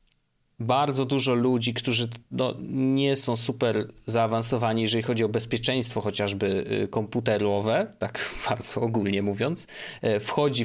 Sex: male